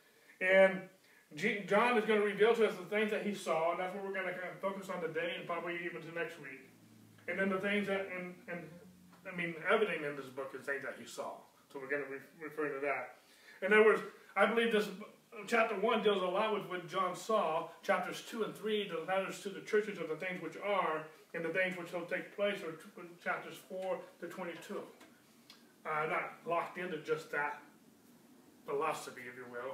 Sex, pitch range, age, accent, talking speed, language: male, 160-200 Hz, 30-49, American, 220 wpm, English